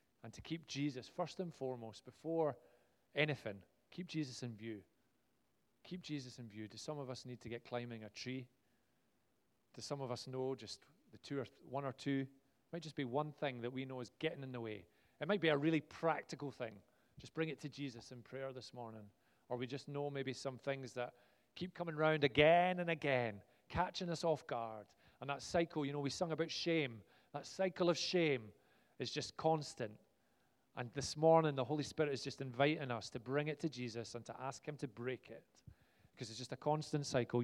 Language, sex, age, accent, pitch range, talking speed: English, male, 30-49, British, 120-150 Hz, 210 wpm